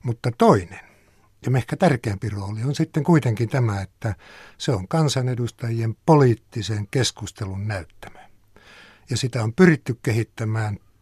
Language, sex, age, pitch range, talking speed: Finnish, male, 60-79, 105-135 Hz, 120 wpm